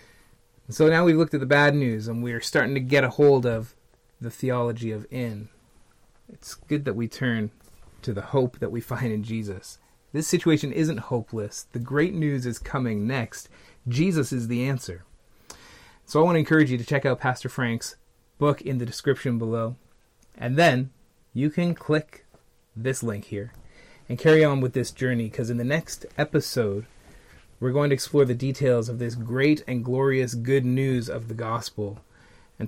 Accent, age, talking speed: American, 30-49, 185 wpm